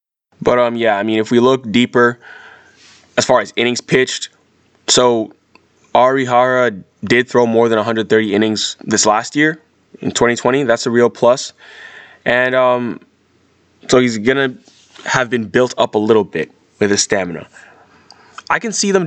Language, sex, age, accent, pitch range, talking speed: English, male, 20-39, American, 110-130 Hz, 160 wpm